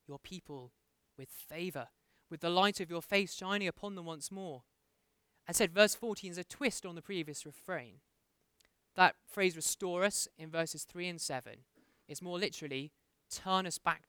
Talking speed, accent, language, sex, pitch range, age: 175 wpm, British, English, male, 150-195 Hz, 20-39